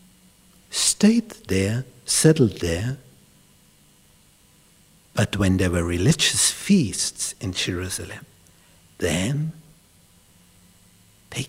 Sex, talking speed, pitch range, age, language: male, 80 wpm, 95-130 Hz, 60-79, English